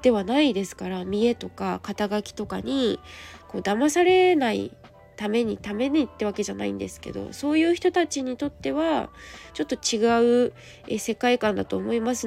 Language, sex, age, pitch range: Japanese, female, 20-39, 205-275 Hz